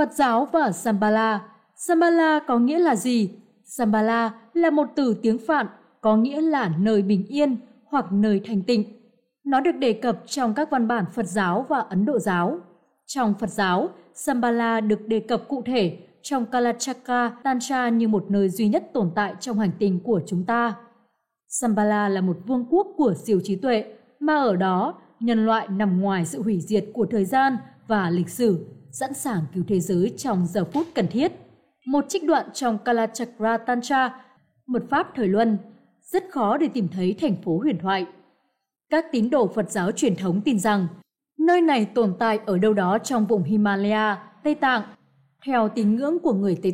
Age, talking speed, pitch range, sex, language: 20-39, 185 wpm, 205-255 Hz, female, Vietnamese